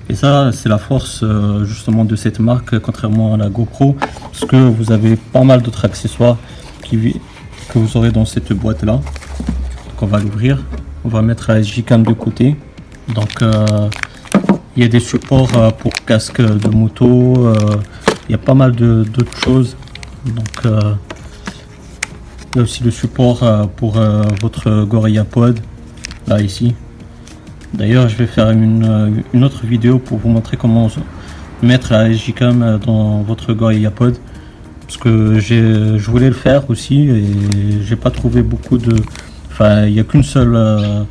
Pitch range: 105-120 Hz